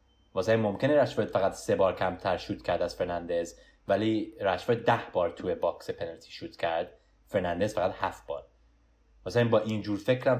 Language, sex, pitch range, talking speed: Persian, male, 90-125 Hz, 180 wpm